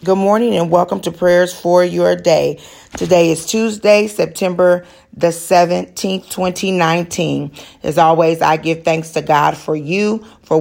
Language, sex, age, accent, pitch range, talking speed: English, female, 40-59, American, 165-200 Hz, 145 wpm